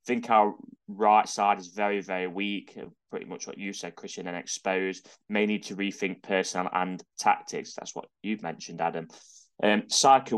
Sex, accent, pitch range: male, British, 95-105 Hz